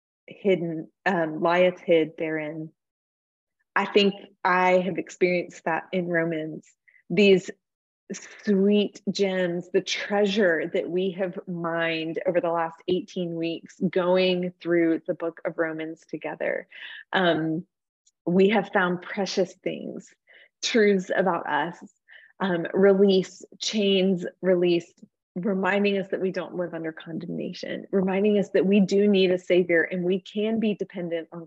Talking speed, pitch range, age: 130 wpm, 170-195 Hz, 20-39